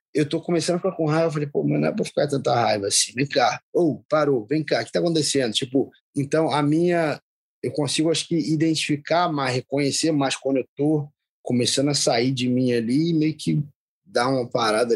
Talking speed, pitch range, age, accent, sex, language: 225 wpm, 130-155 Hz, 20-39, Brazilian, male, Portuguese